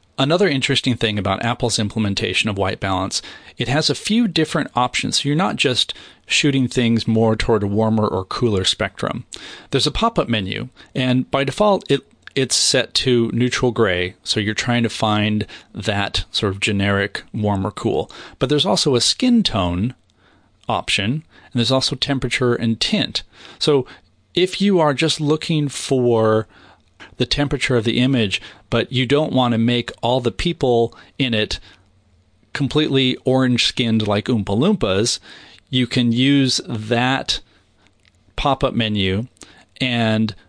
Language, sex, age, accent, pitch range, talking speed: English, male, 40-59, American, 105-135 Hz, 150 wpm